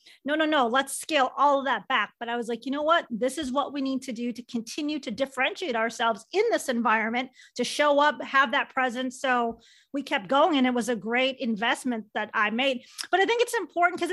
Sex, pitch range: female, 245-300 Hz